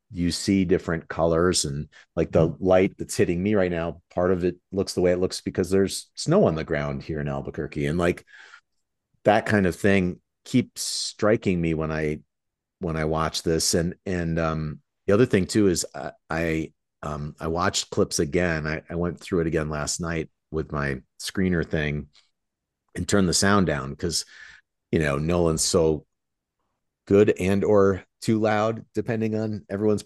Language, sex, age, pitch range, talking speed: English, male, 40-59, 75-95 Hz, 180 wpm